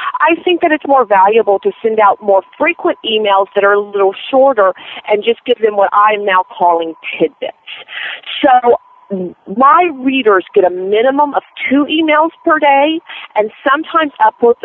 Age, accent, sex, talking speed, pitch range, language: 40-59, American, female, 170 wpm, 200-295 Hz, English